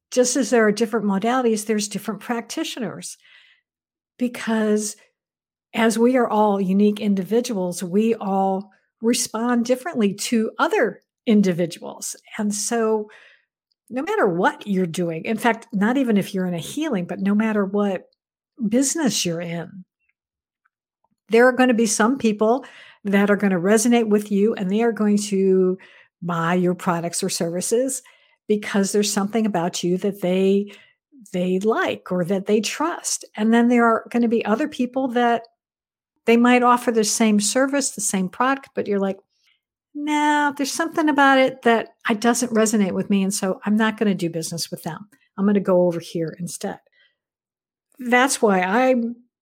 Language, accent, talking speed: English, American, 165 wpm